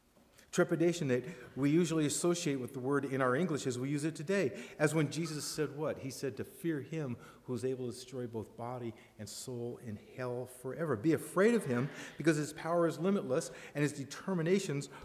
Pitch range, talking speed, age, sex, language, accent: 120-160 Hz, 200 wpm, 50-69, male, English, American